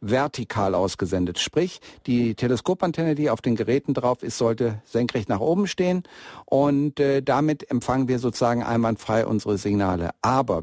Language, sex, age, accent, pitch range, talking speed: German, male, 60-79, German, 120-150 Hz, 145 wpm